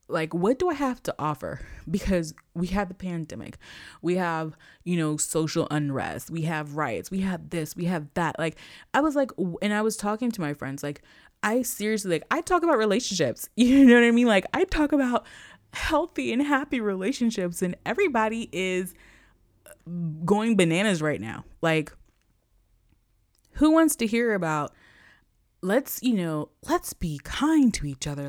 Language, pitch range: English, 155-220 Hz